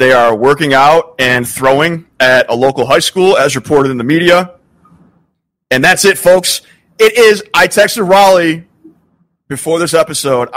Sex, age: male, 30-49